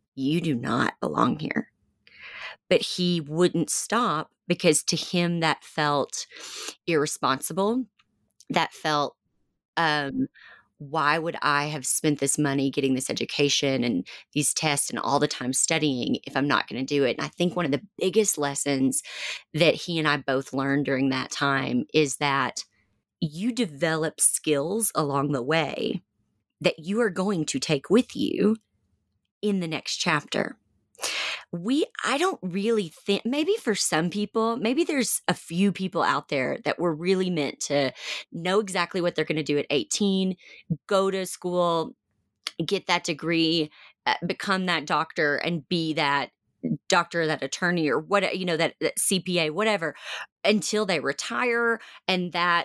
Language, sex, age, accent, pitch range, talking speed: English, female, 30-49, American, 145-195 Hz, 160 wpm